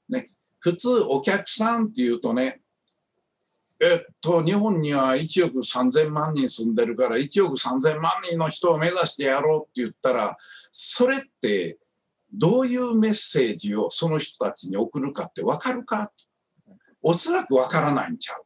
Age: 60-79